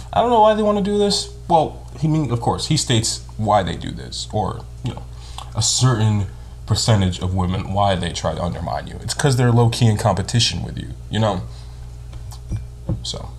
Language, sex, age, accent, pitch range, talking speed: English, male, 20-39, American, 85-115 Hz, 205 wpm